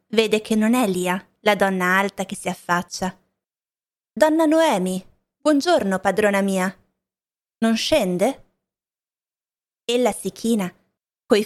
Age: 20-39